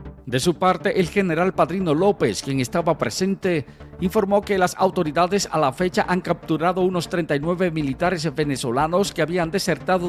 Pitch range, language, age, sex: 150-185 Hz, Spanish, 50-69, male